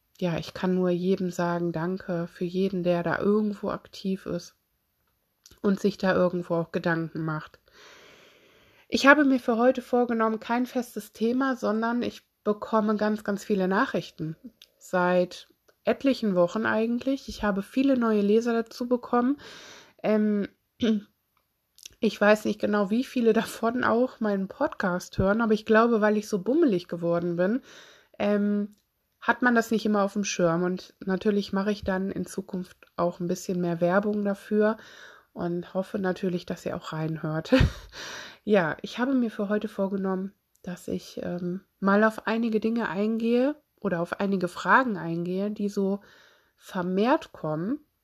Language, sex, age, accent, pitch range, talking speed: German, female, 20-39, German, 180-235 Hz, 150 wpm